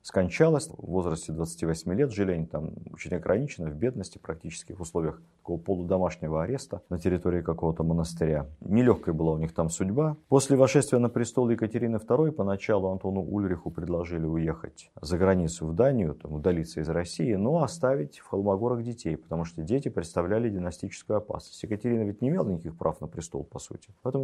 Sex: male